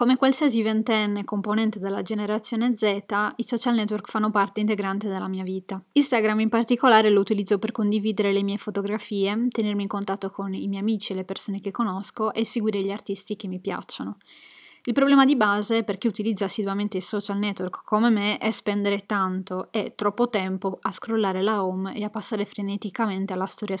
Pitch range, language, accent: 195-225 Hz, Italian, native